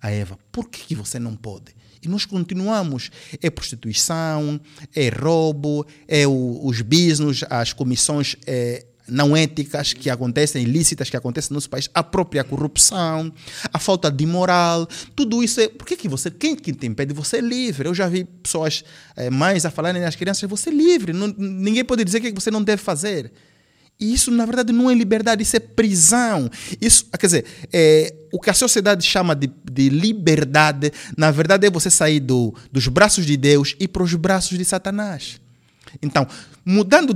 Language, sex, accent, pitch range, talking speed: Portuguese, male, Brazilian, 135-195 Hz, 190 wpm